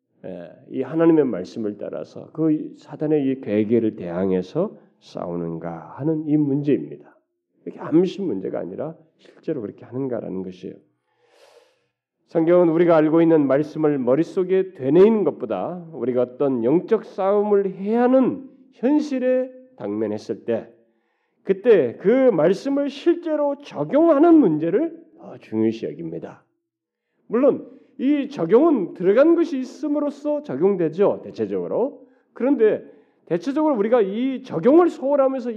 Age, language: 40-59, Korean